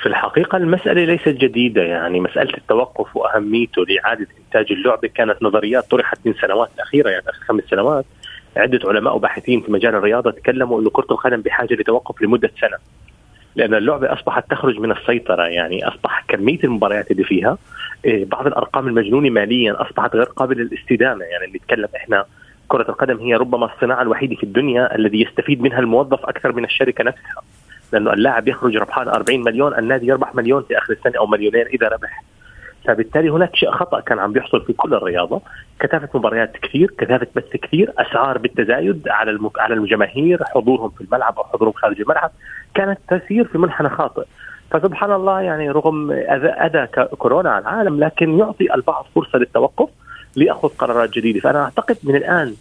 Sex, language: male, Arabic